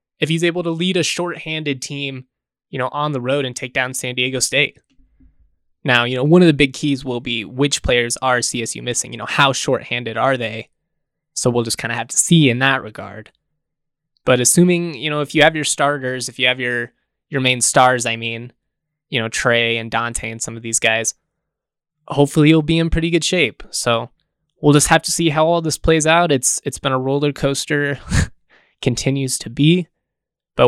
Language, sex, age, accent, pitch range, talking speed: English, male, 20-39, American, 125-160 Hz, 210 wpm